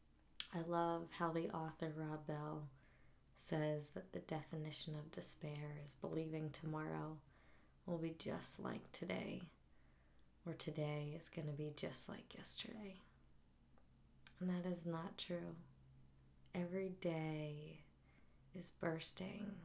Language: English